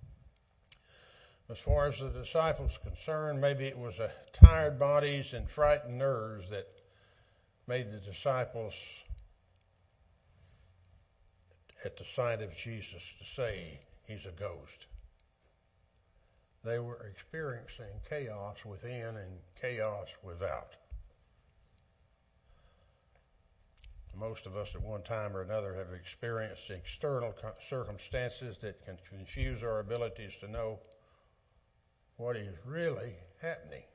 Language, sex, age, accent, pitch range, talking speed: English, male, 60-79, American, 95-125 Hz, 105 wpm